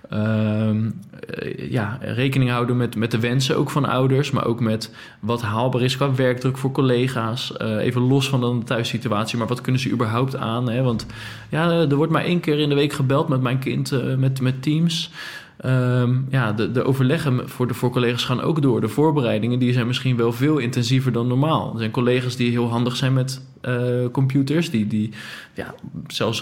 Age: 20-39